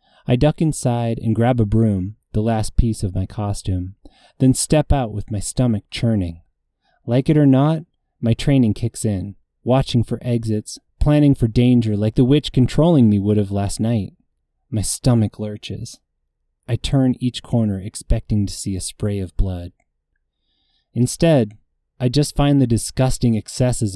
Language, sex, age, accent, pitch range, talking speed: English, male, 20-39, American, 100-125 Hz, 160 wpm